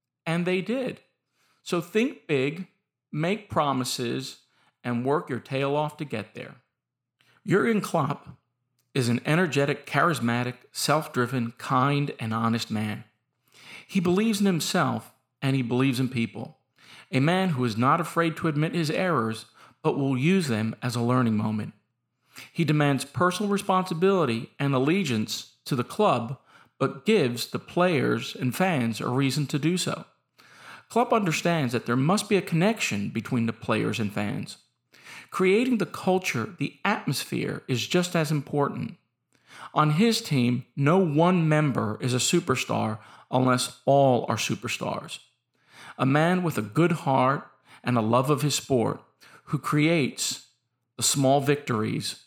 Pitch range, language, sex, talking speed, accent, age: 120-170 Hz, English, male, 145 wpm, American, 50-69